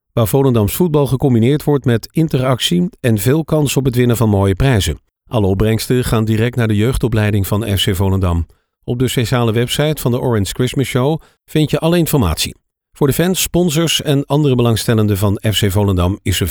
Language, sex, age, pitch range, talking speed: Dutch, male, 50-69, 105-140 Hz, 185 wpm